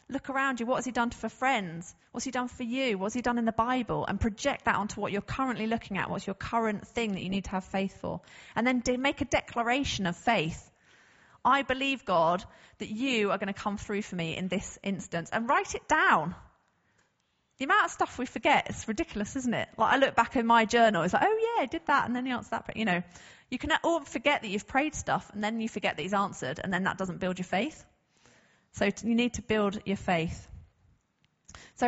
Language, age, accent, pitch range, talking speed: English, 30-49, British, 185-245 Hz, 240 wpm